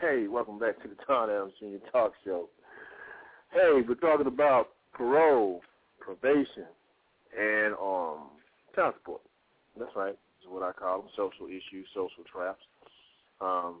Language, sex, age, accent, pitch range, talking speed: English, male, 40-59, American, 105-160 Hz, 135 wpm